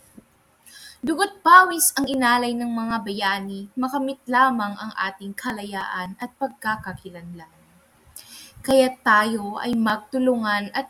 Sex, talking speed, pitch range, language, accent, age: female, 100 wpm, 200-260 Hz, English, Filipino, 20-39